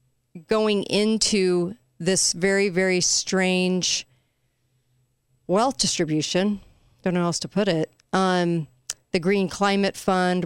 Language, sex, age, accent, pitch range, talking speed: English, female, 40-59, American, 160-195 Hz, 110 wpm